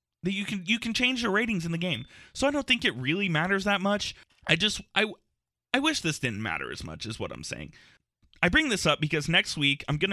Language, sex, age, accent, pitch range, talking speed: English, male, 20-39, American, 120-165 Hz, 255 wpm